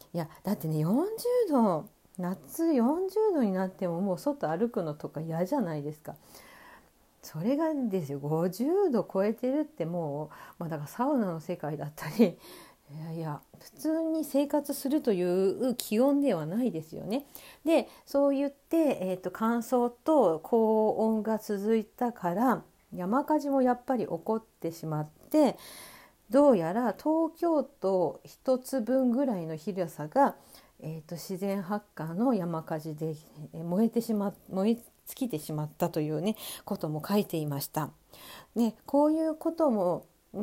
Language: Japanese